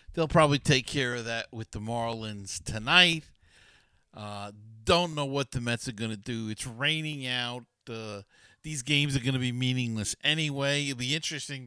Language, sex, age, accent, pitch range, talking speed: English, male, 50-69, American, 110-160 Hz, 180 wpm